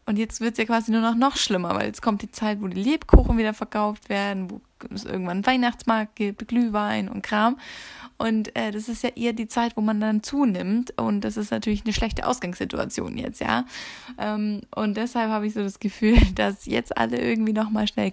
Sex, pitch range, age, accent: female, 200-235 Hz, 20-39, German